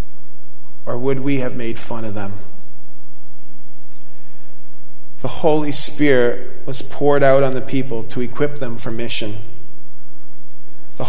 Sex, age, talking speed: male, 40-59, 125 wpm